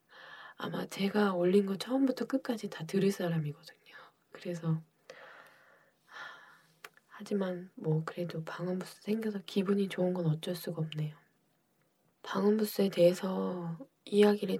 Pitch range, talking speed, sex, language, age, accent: 175-230 Hz, 100 wpm, female, English, 20-39, Korean